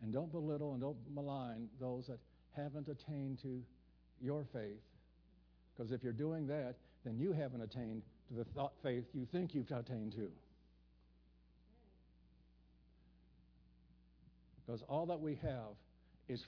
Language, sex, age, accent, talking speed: English, male, 60-79, American, 135 wpm